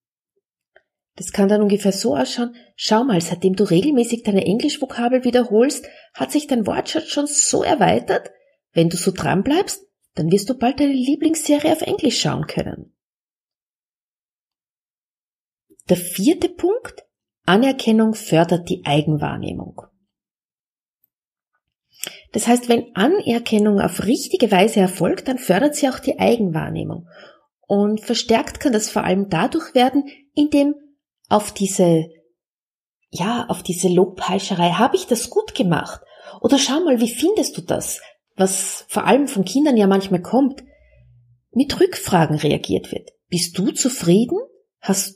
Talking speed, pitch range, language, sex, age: 130 wpm, 190-295 Hz, German, female, 30-49